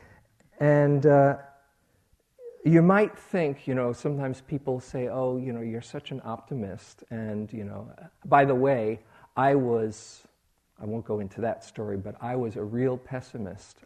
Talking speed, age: 160 wpm, 50-69